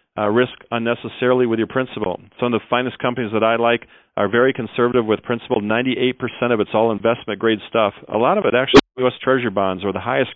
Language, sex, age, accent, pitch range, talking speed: English, male, 40-59, American, 110-135 Hz, 215 wpm